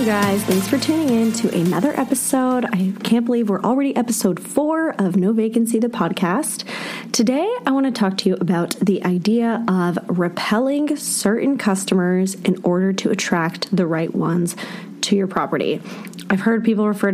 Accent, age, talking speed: American, 20-39, 170 wpm